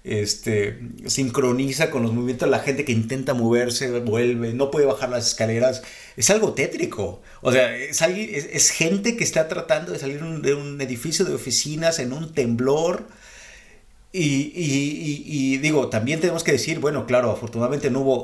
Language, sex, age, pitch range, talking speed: Spanish, male, 50-69, 120-155 Hz, 180 wpm